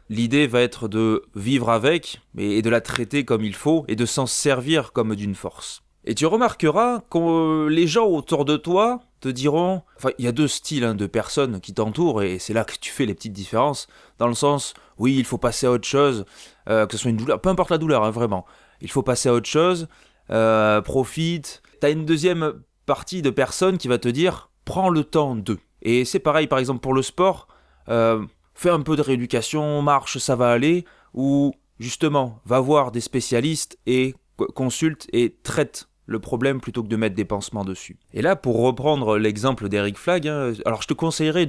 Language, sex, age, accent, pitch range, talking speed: French, male, 20-39, French, 115-150 Hz, 215 wpm